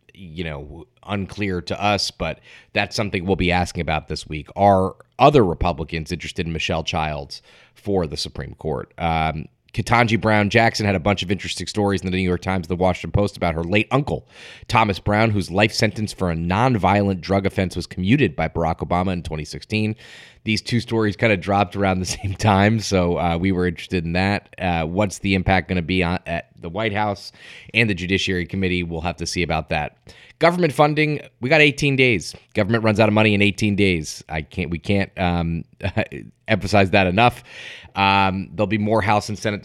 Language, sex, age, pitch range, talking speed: English, male, 30-49, 85-105 Hz, 200 wpm